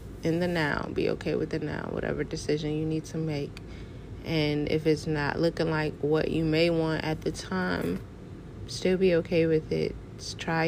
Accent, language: American, English